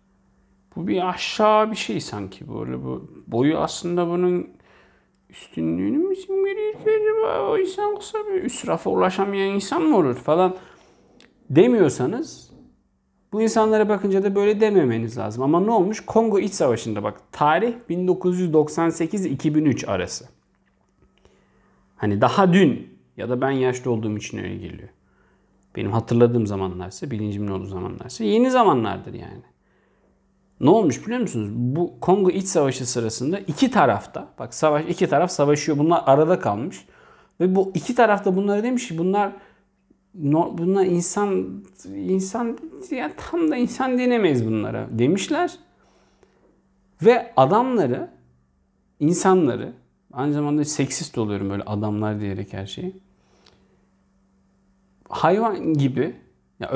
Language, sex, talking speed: Turkish, male, 125 wpm